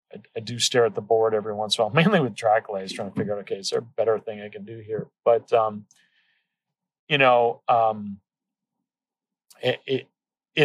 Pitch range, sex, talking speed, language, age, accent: 115-140 Hz, male, 210 wpm, English, 40-59, American